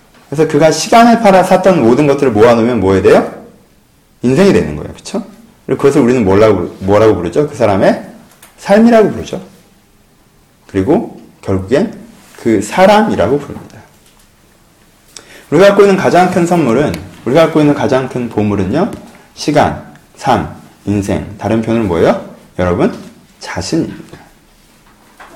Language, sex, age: Korean, male, 30-49